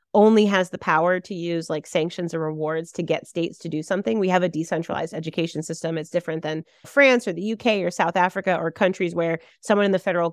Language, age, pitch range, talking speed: English, 30-49, 165-220 Hz, 225 wpm